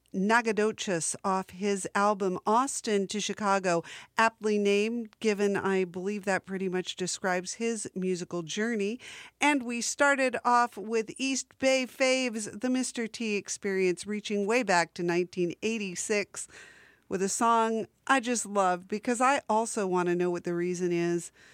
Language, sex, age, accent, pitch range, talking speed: English, female, 50-69, American, 185-225 Hz, 145 wpm